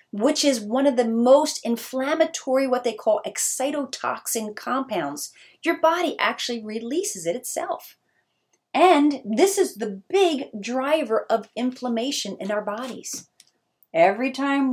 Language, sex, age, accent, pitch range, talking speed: English, female, 30-49, American, 205-285 Hz, 125 wpm